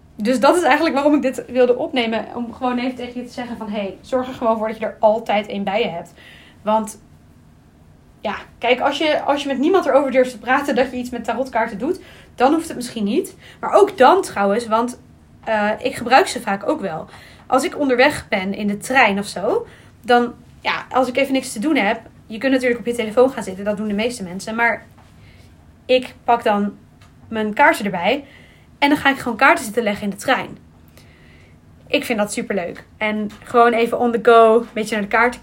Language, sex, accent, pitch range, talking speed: Dutch, female, Dutch, 215-265 Hz, 220 wpm